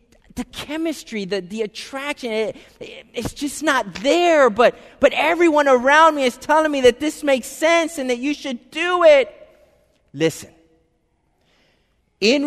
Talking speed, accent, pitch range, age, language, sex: 150 wpm, American, 185-265 Hz, 30-49, English, male